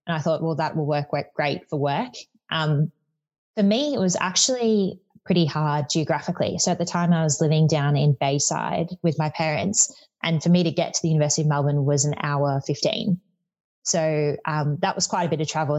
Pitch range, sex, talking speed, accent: 145-170 Hz, female, 215 wpm, Australian